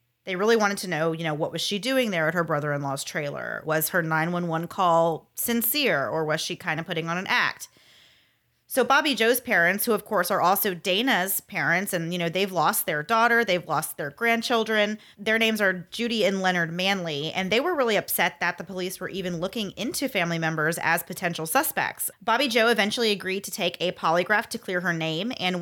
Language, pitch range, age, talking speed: English, 165-210 Hz, 30-49, 210 wpm